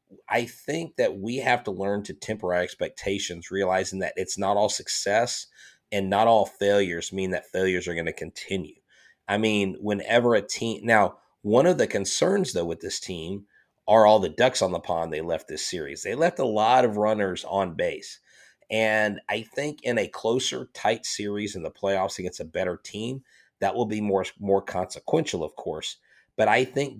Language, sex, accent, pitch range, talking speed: English, male, American, 95-110 Hz, 195 wpm